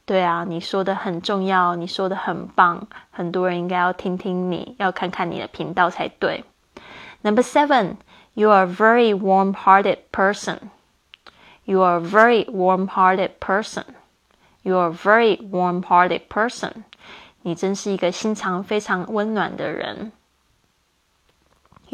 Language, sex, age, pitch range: Chinese, female, 20-39, 185-220 Hz